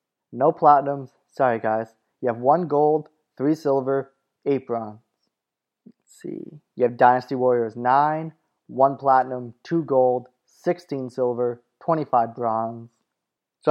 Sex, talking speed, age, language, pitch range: male, 125 wpm, 20-39, English, 125-145 Hz